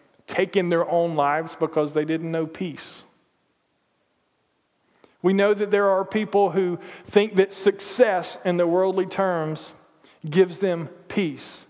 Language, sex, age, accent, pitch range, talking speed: English, male, 40-59, American, 175-210 Hz, 135 wpm